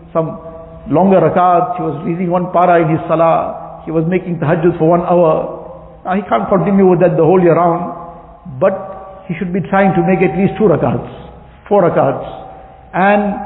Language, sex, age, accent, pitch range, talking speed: English, male, 60-79, Indian, 165-195 Hz, 185 wpm